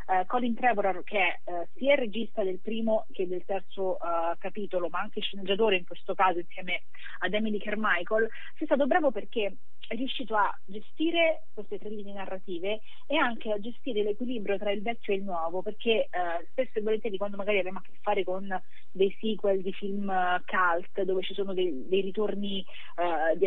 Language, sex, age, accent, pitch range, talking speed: Italian, female, 30-49, native, 185-225 Hz, 195 wpm